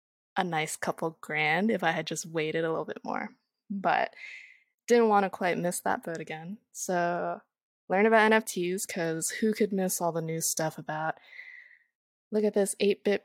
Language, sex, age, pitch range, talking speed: English, female, 20-39, 175-220 Hz, 175 wpm